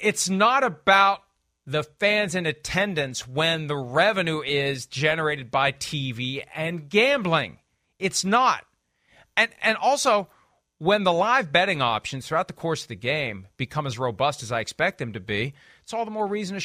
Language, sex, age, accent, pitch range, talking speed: English, male, 40-59, American, 140-195 Hz, 170 wpm